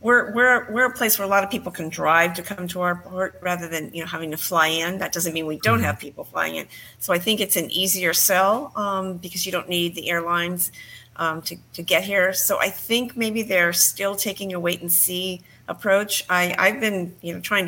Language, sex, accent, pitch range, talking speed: English, female, American, 170-195 Hz, 235 wpm